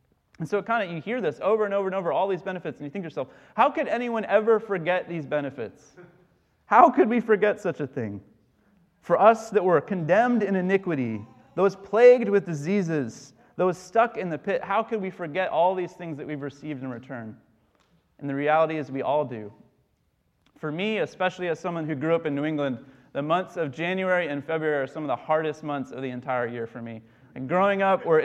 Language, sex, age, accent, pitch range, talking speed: English, male, 30-49, American, 150-195 Hz, 215 wpm